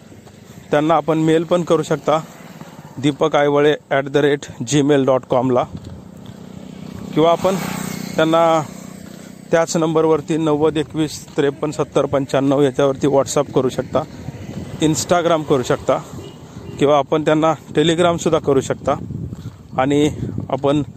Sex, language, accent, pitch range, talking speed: male, Marathi, native, 135-160 Hz, 90 wpm